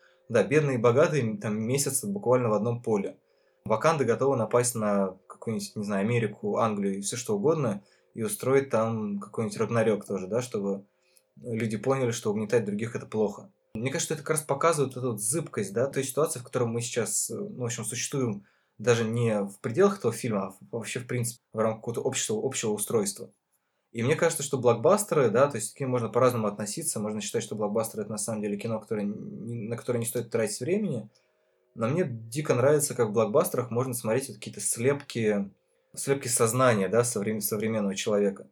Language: Russian